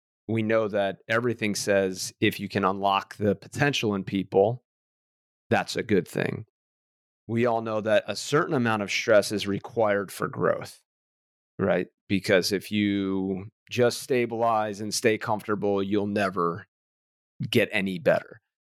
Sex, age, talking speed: male, 30-49, 140 wpm